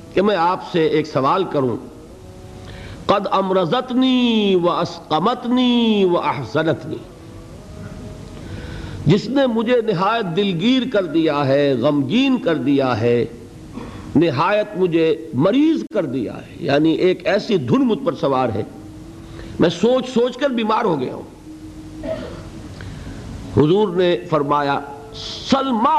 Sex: male